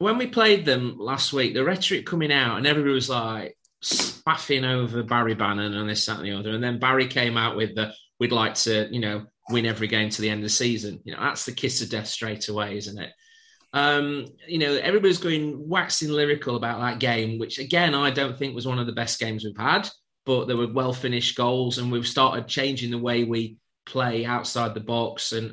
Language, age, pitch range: English, 30-49, 115-145 Hz